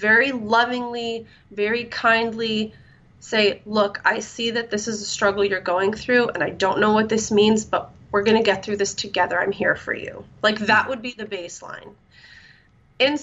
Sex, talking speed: female, 190 wpm